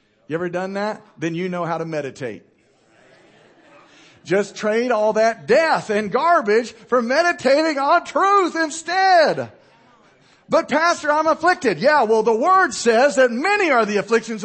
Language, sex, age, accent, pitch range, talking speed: English, male, 40-59, American, 210-320 Hz, 150 wpm